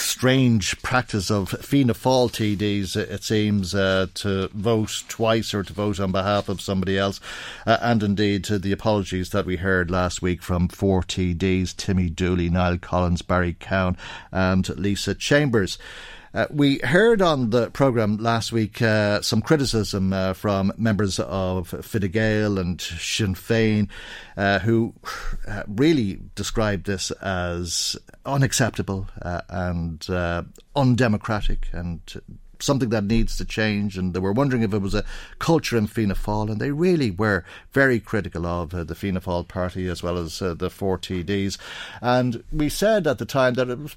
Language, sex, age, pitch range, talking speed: English, male, 50-69, 95-120 Hz, 160 wpm